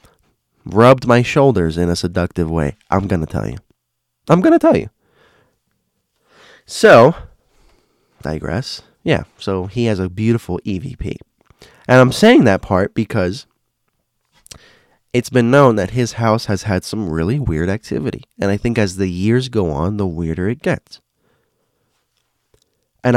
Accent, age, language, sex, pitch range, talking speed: American, 20-39, English, male, 90-115 Hz, 150 wpm